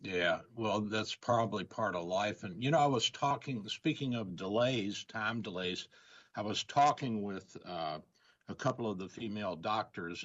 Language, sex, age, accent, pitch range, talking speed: English, male, 60-79, American, 90-120 Hz, 170 wpm